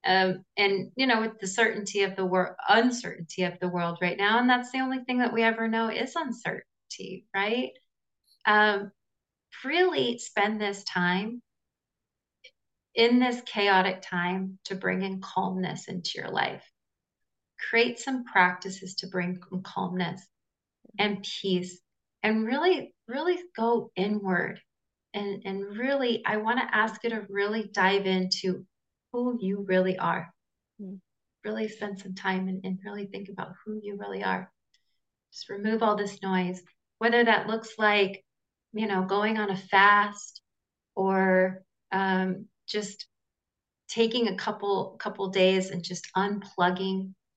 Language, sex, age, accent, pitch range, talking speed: English, female, 30-49, American, 190-225 Hz, 140 wpm